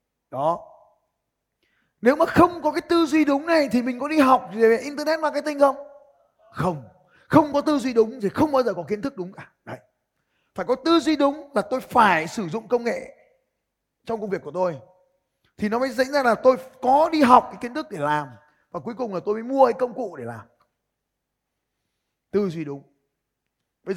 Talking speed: 215 wpm